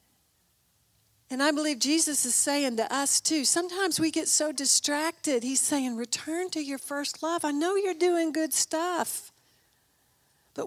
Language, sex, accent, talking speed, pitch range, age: English, female, American, 155 wpm, 220-305 Hz, 50-69